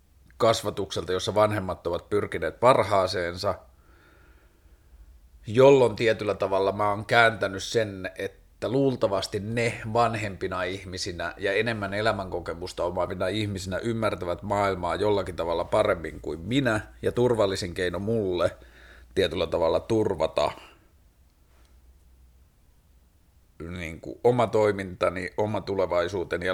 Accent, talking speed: native, 100 wpm